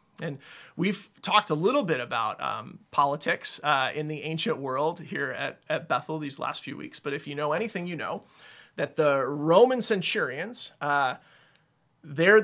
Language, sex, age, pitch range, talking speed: English, male, 30-49, 145-190 Hz, 170 wpm